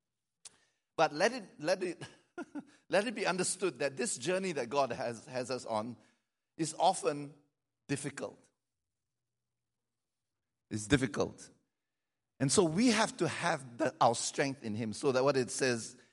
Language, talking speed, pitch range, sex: English, 145 wpm, 120-180 Hz, male